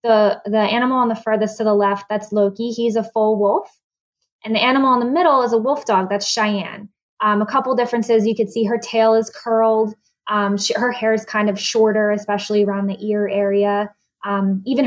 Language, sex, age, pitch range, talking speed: English, female, 20-39, 195-225 Hz, 215 wpm